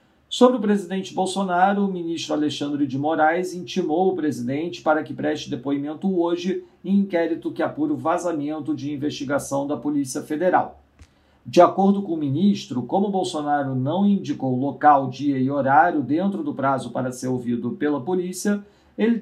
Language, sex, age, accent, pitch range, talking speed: Portuguese, male, 40-59, Brazilian, 140-180 Hz, 155 wpm